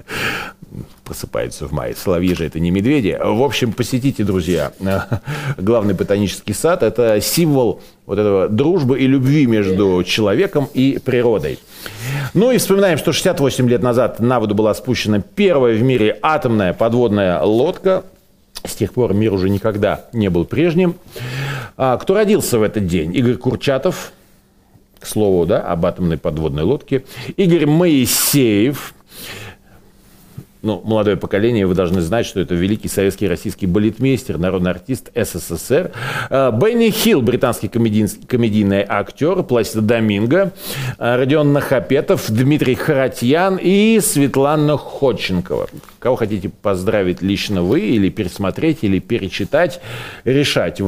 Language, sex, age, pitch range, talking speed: Russian, male, 40-59, 100-145 Hz, 125 wpm